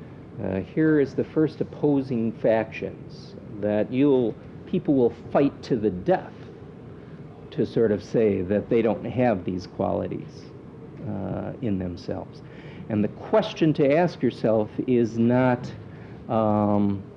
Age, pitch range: 50-69, 110-145 Hz